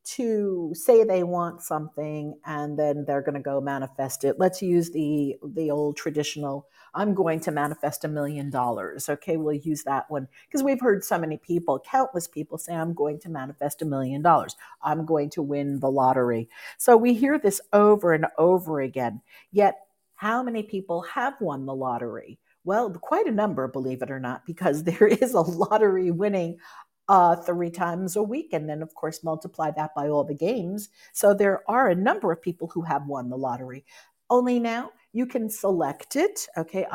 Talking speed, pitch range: 190 wpm, 145-195 Hz